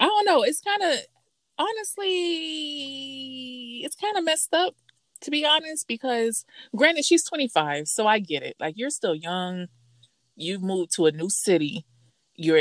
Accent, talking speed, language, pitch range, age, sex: American, 160 wpm, English, 155-210 Hz, 30-49, female